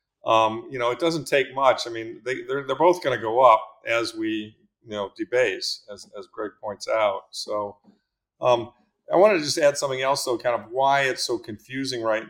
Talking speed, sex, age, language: 215 wpm, male, 50-69, English